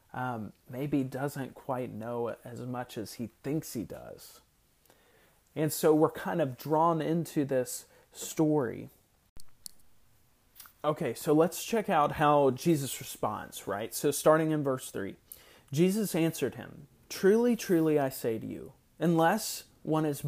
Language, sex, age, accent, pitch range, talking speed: English, male, 30-49, American, 135-170 Hz, 140 wpm